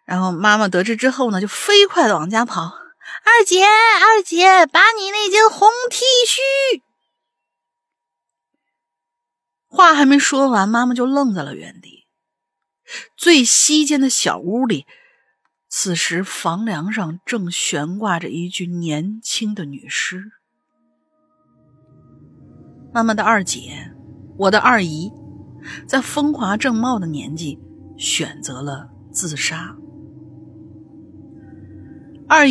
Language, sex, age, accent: Chinese, female, 50-69, native